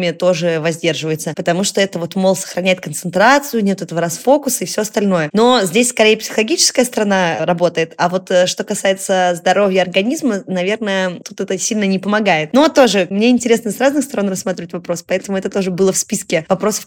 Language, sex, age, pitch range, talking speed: Russian, female, 20-39, 180-215 Hz, 175 wpm